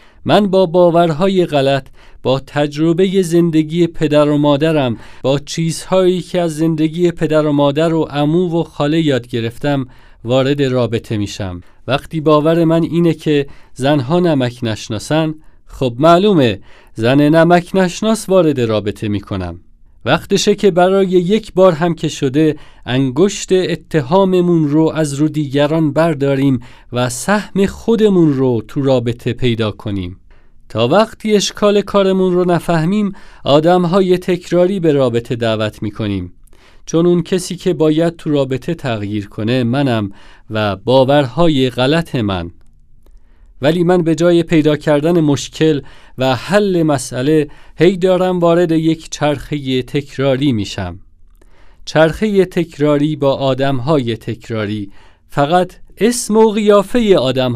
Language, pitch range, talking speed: Persian, 120-175 Hz, 125 wpm